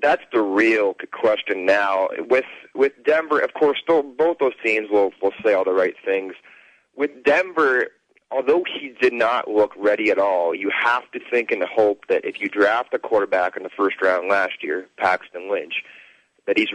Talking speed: 190 wpm